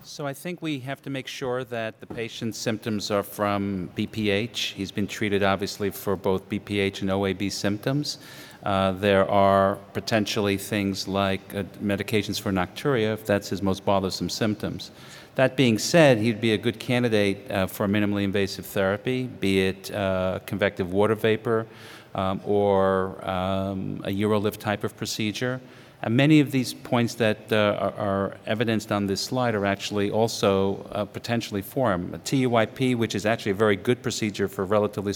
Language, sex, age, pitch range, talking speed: English, male, 50-69, 100-115 Hz, 165 wpm